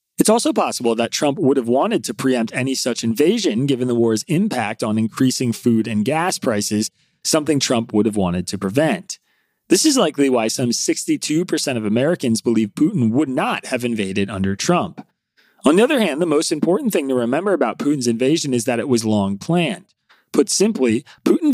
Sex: male